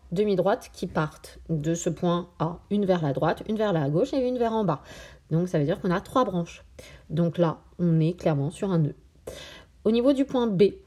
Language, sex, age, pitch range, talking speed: French, female, 30-49, 155-210 Hz, 225 wpm